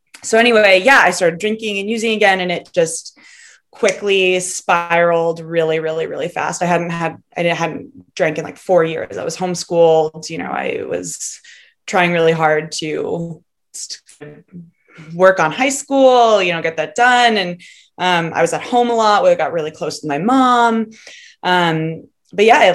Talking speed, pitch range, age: 175 wpm, 155-190 Hz, 20-39